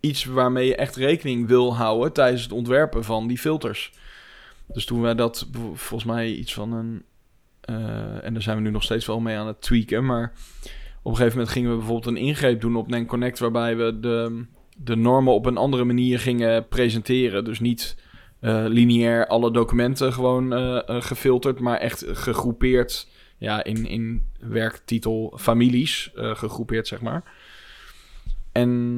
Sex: male